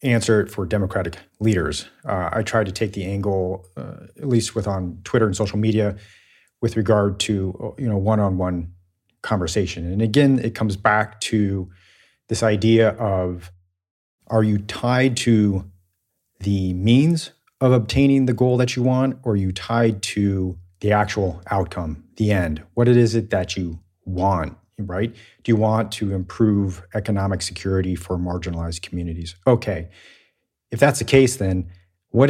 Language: English